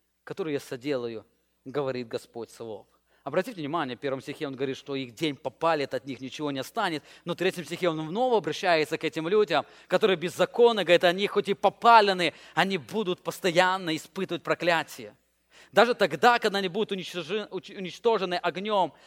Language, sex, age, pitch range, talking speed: English, male, 20-39, 160-210 Hz, 160 wpm